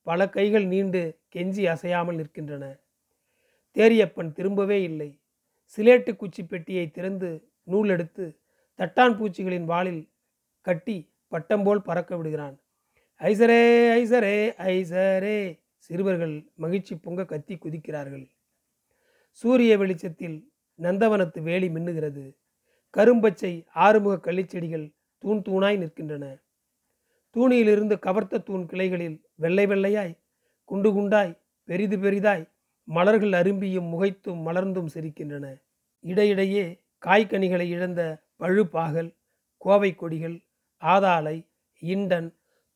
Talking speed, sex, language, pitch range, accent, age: 85 wpm, male, Tamil, 165-200 Hz, native, 40-59